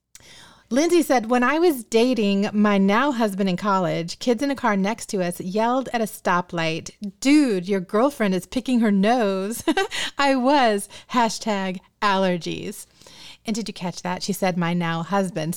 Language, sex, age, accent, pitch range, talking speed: English, female, 30-49, American, 180-235 Hz, 165 wpm